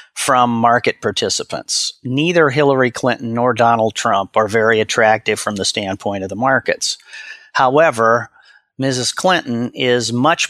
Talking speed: 130 wpm